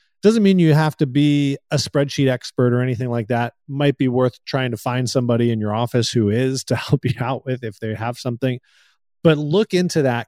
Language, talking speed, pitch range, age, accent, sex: English, 220 wpm, 120-145 Hz, 30-49, American, male